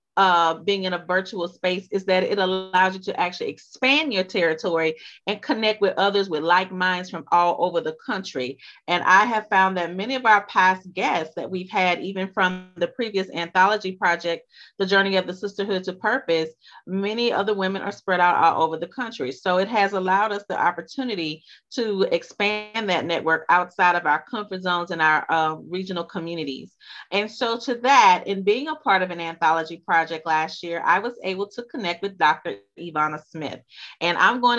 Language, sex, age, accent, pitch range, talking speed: English, female, 30-49, American, 170-205 Hz, 195 wpm